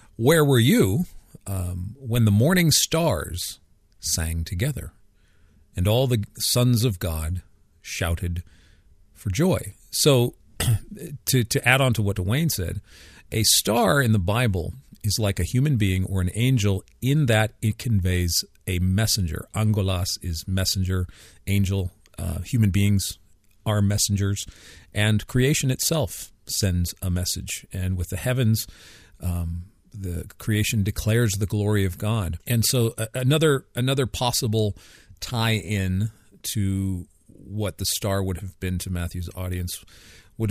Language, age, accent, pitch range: English, 40-59, American, 90-110 Hz